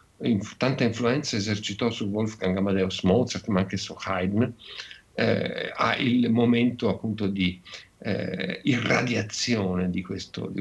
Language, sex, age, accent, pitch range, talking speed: Italian, male, 50-69, native, 95-110 Hz, 125 wpm